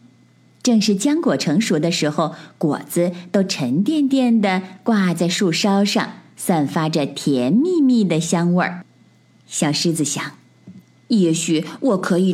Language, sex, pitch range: Chinese, female, 165-250 Hz